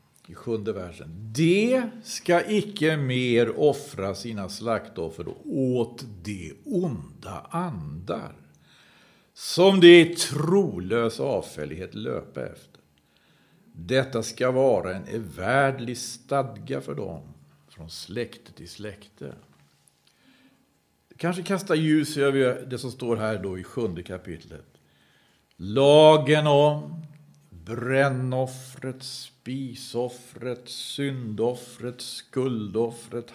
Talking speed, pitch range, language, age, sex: 90 wpm, 105-145 Hz, Swedish, 50-69, male